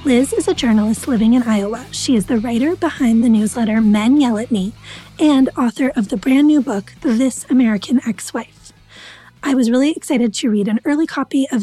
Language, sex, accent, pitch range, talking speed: English, female, American, 220-270 Hz, 195 wpm